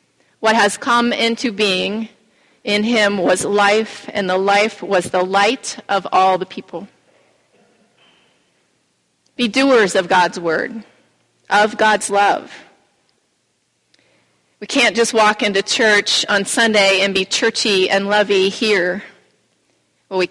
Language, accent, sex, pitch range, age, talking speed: English, American, female, 195-230 Hz, 30-49, 125 wpm